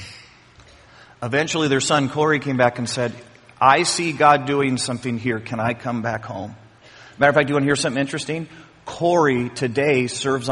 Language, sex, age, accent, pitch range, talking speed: English, male, 40-59, American, 145-200 Hz, 185 wpm